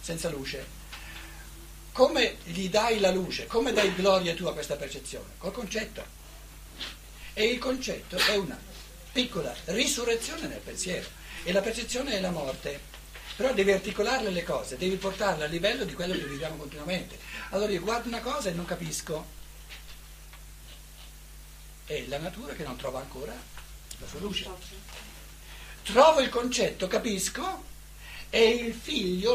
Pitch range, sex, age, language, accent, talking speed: 130-205 Hz, male, 60-79, Italian, native, 145 wpm